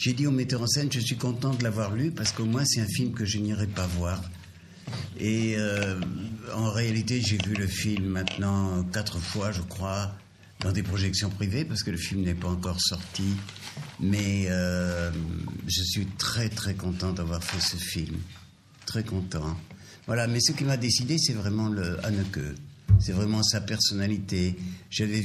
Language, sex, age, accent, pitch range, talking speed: Italian, male, 60-79, French, 95-110 Hz, 180 wpm